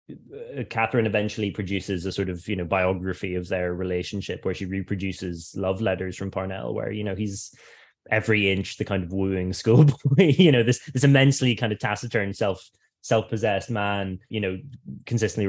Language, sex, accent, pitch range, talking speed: English, male, British, 95-110 Hz, 175 wpm